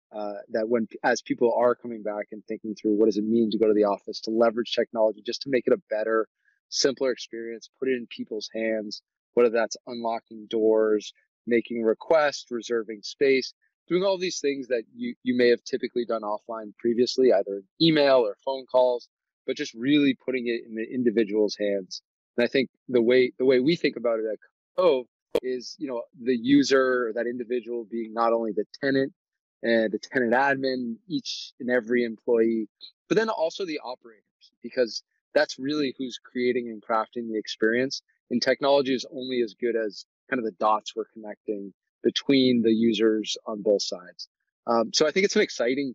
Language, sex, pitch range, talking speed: English, male, 110-125 Hz, 190 wpm